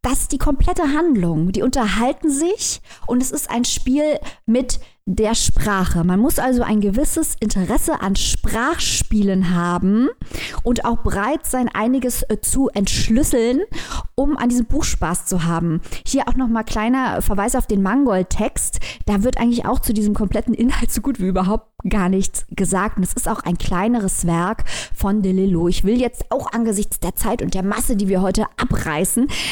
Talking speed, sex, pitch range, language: 175 wpm, female, 200-250 Hz, German